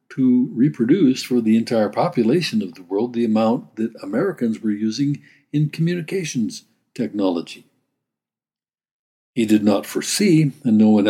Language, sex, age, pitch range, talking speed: English, male, 60-79, 110-150 Hz, 135 wpm